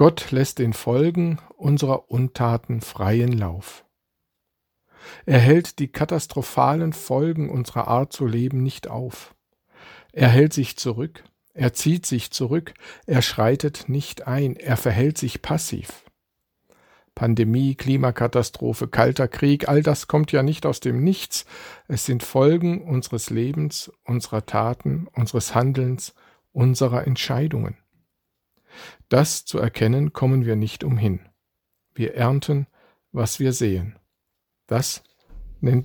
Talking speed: 120 wpm